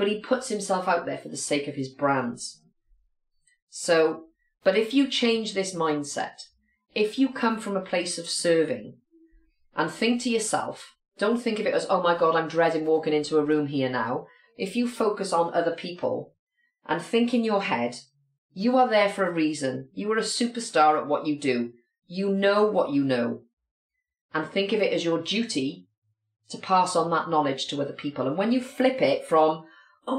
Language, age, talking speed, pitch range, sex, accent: English, 40-59, 195 wpm, 150-235 Hz, female, British